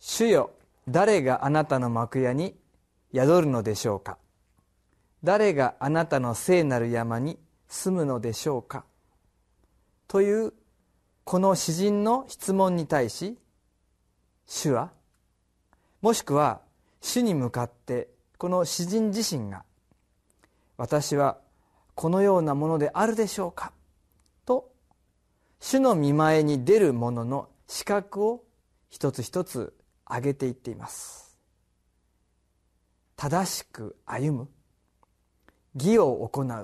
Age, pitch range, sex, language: 40-59, 120-190 Hz, male, Japanese